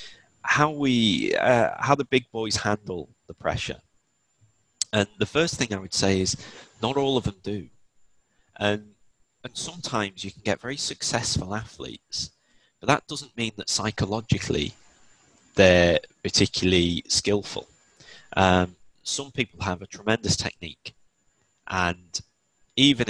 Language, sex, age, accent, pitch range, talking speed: English, male, 30-49, British, 90-110 Hz, 130 wpm